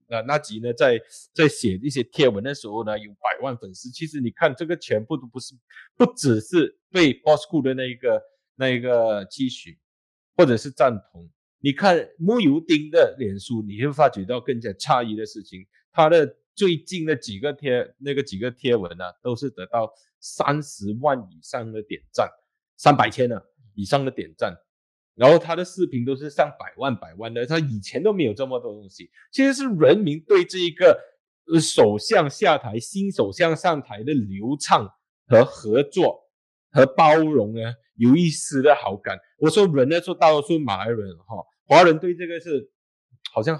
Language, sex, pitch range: Chinese, male, 115-165 Hz